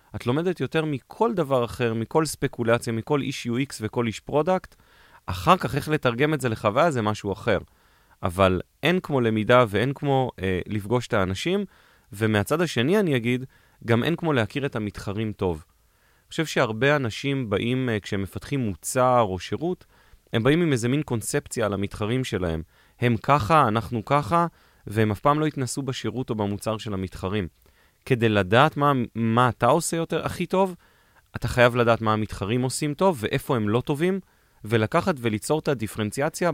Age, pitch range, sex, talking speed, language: 30-49, 110-145 Hz, male, 170 wpm, Hebrew